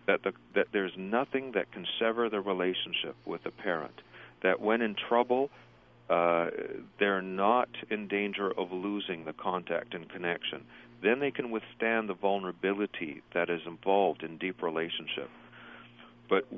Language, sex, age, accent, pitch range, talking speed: English, male, 40-59, American, 85-110 Hz, 150 wpm